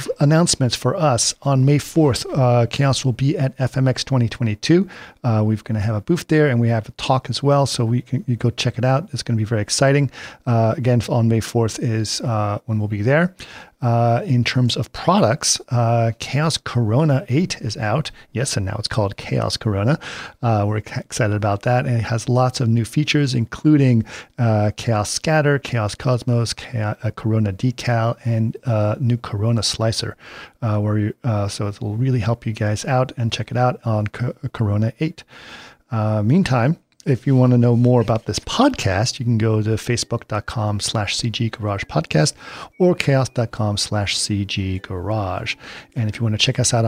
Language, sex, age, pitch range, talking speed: English, male, 40-59, 110-135 Hz, 185 wpm